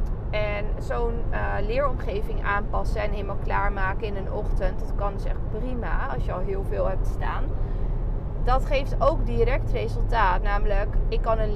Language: Dutch